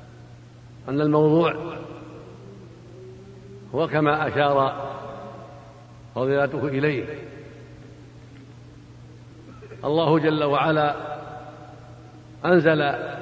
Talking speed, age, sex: 50 wpm, 70-89, male